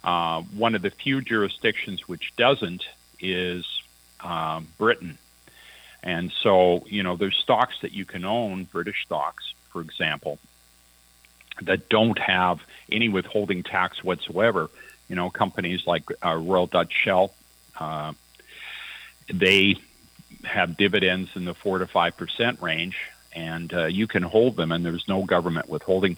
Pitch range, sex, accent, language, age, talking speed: 80-95 Hz, male, American, English, 50-69, 140 wpm